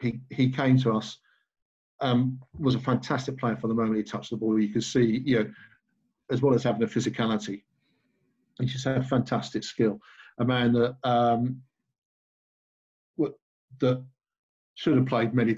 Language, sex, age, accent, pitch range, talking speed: English, male, 50-69, British, 115-130 Hz, 170 wpm